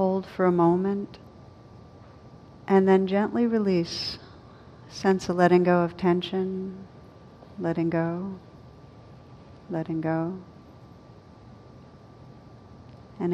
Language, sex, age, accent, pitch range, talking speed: English, female, 50-69, American, 130-180 Hz, 85 wpm